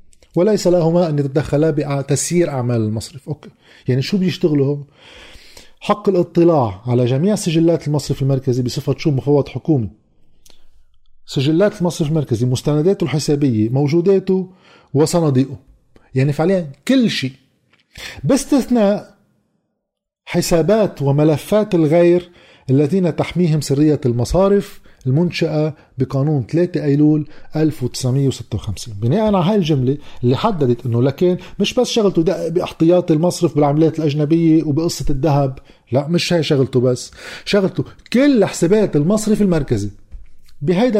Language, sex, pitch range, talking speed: Arabic, male, 130-175 Hz, 105 wpm